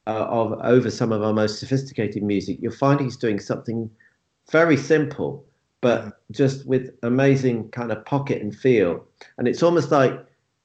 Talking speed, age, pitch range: 165 wpm, 40-59, 110-135 Hz